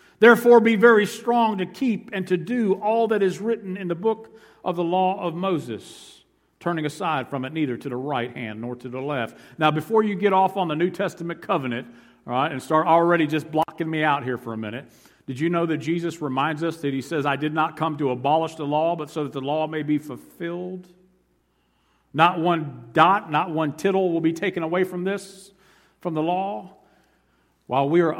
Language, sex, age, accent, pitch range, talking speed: English, male, 50-69, American, 130-175 Hz, 215 wpm